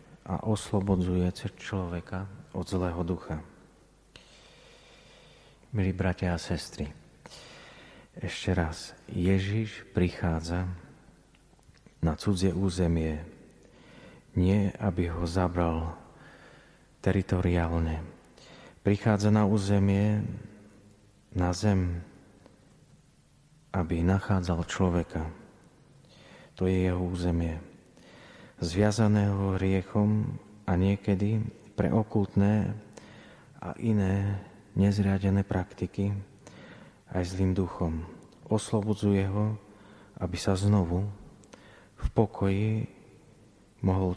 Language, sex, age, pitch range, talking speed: Slovak, male, 40-59, 90-105 Hz, 75 wpm